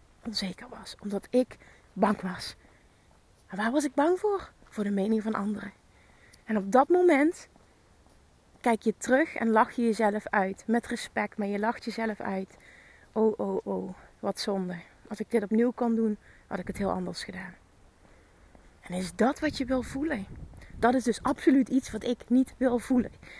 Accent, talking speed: Dutch, 180 wpm